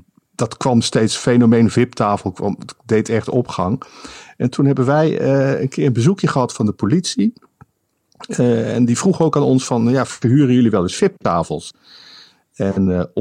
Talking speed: 165 wpm